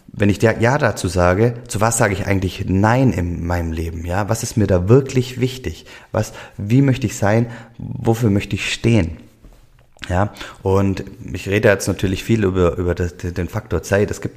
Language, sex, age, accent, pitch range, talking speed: German, male, 30-49, German, 90-105 Hz, 190 wpm